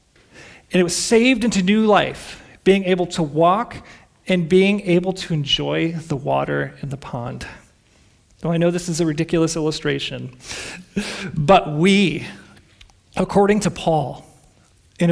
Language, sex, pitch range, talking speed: English, male, 155-185 Hz, 140 wpm